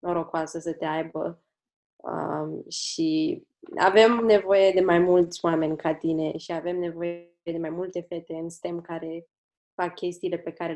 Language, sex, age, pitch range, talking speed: Romanian, female, 20-39, 170-200 Hz, 155 wpm